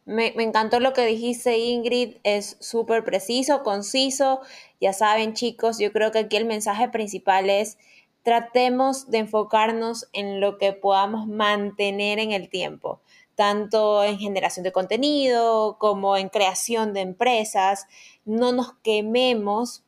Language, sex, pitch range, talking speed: Spanish, female, 200-240 Hz, 135 wpm